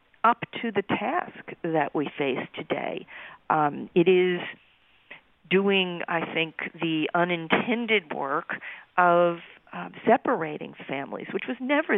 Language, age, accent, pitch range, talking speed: English, 50-69, American, 150-195 Hz, 120 wpm